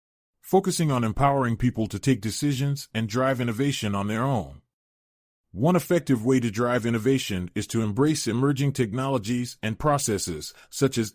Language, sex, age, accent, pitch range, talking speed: English, male, 30-49, American, 105-140 Hz, 150 wpm